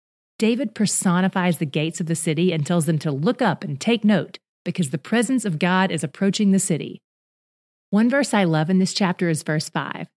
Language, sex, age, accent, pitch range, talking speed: English, female, 30-49, American, 165-205 Hz, 205 wpm